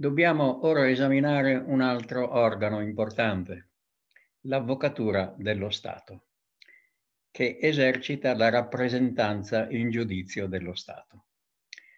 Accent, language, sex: native, Italian, male